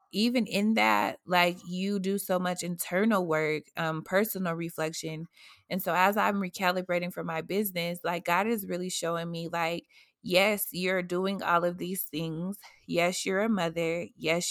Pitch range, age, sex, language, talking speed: 170-190 Hz, 20-39, female, English, 165 wpm